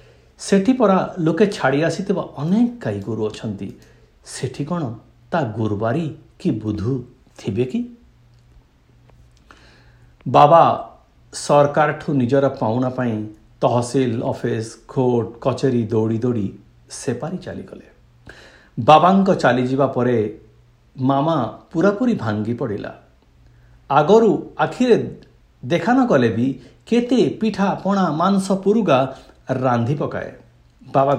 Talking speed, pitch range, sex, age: 90 wpm, 110-155 Hz, male, 60-79